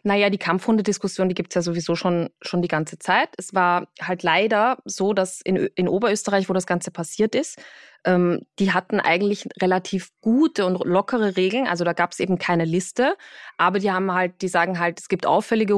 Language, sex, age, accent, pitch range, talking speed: German, female, 20-39, German, 170-200 Hz, 200 wpm